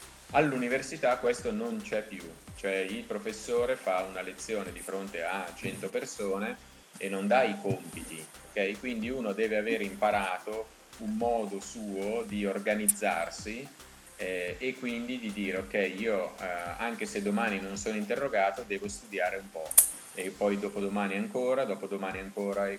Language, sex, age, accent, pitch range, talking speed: Italian, male, 30-49, native, 95-110 Hz, 150 wpm